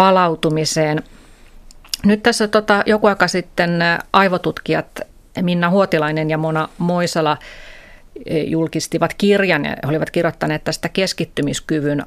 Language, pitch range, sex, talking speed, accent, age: Finnish, 150-180 Hz, female, 105 wpm, native, 30-49